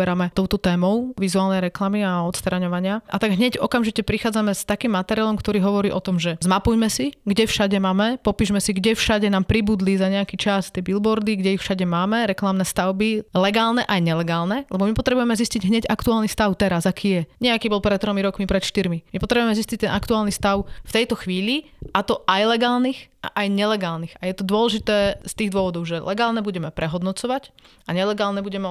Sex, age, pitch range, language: female, 30-49, 190-220 Hz, Slovak